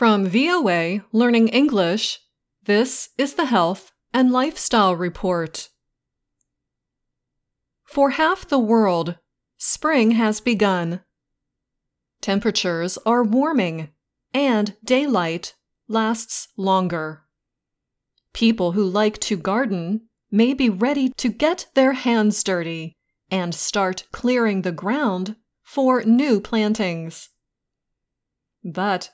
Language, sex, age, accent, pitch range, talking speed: English, female, 30-49, American, 185-240 Hz, 95 wpm